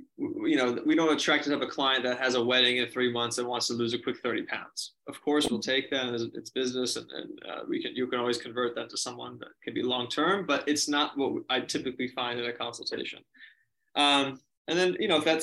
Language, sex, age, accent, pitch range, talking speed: English, male, 20-39, American, 125-145 Hz, 255 wpm